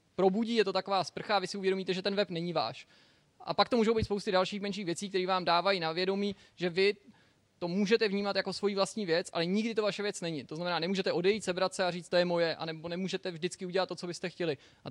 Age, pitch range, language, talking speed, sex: 20-39, 165-185 Hz, Czech, 255 wpm, male